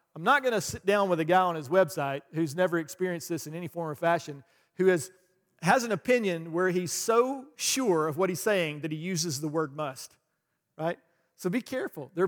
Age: 40-59